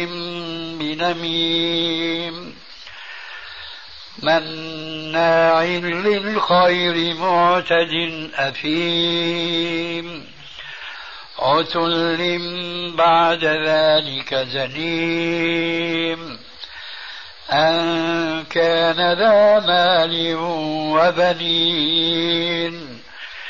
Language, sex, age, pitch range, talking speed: Arabic, male, 60-79, 160-170 Hz, 35 wpm